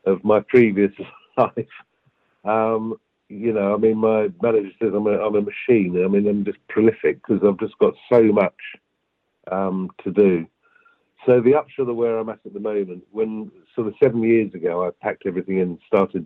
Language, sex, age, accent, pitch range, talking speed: English, male, 50-69, British, 95-110 Hz, 190 wpm